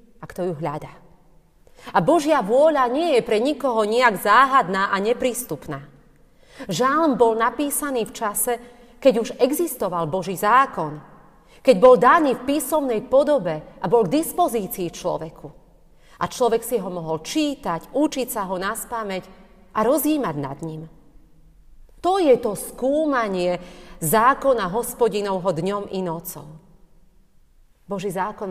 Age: 40-59